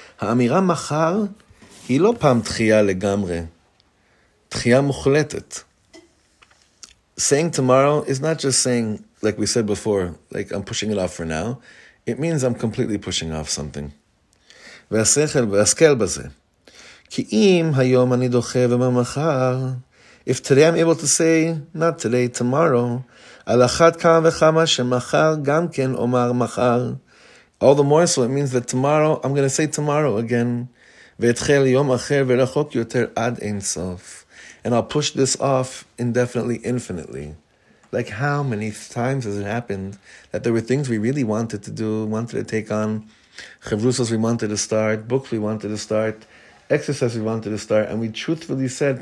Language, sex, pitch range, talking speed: English, male, 110-140 Hz, 125 wpm